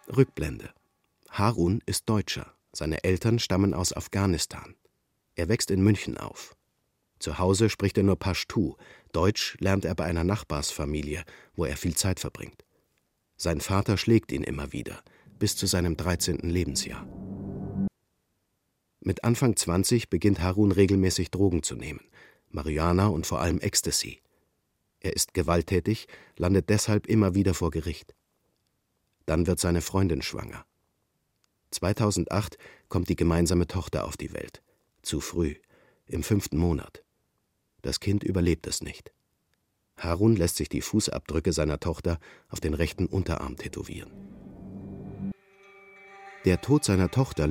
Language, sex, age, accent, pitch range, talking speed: German, male, 50-69, German, 85-100 Hz, 130 wpm